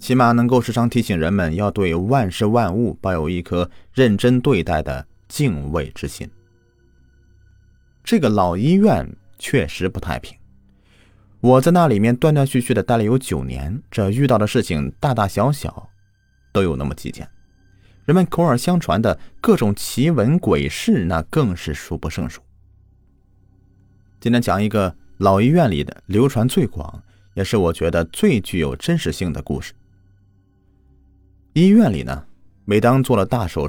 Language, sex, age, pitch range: Chinese, male, 30-49, 85-115 Hz